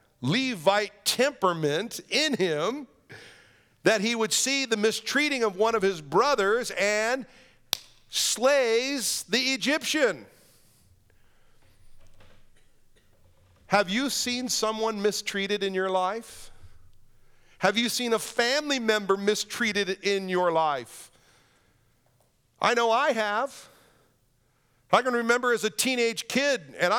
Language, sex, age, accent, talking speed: English, male, 50-69, American, 110 wpm